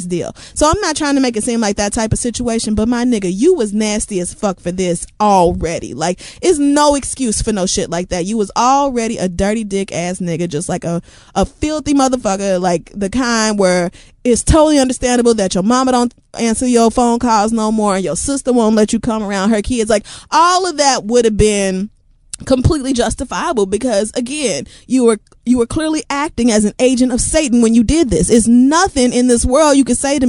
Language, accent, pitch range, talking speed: English, American, 195-255 Hz, 220 wpm